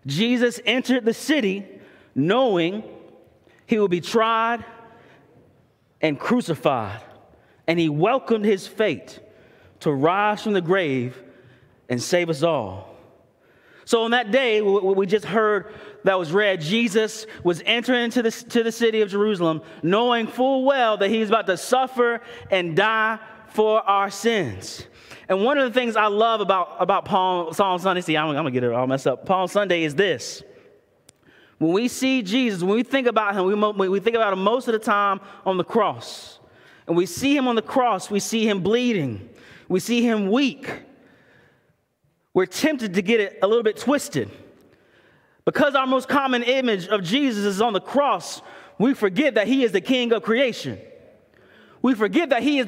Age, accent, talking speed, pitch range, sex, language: 30-49, American, 175 wpm, 190-250 Hz, male, English